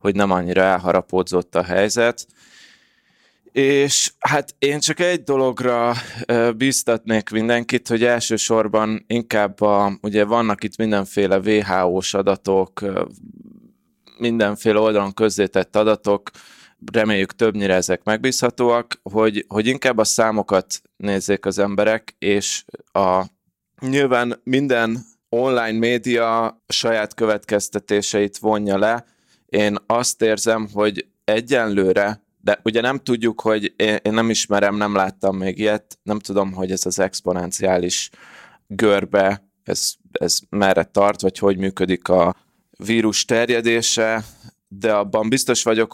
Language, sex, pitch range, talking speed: Hungarian, male, 100-115 Hz, 110 wpm